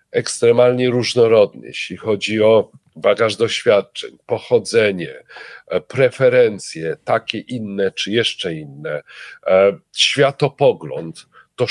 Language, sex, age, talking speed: Polish, male, 40-59, 80 wpm